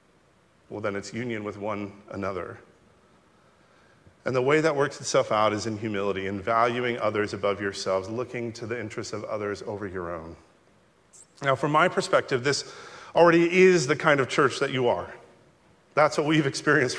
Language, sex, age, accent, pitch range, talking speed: English, male, 40-59, American, 110-155 Hz, 175 wpm